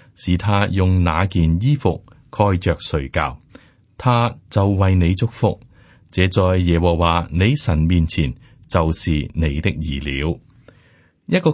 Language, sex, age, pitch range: Chinese, male, 30-49, 85-120 Hz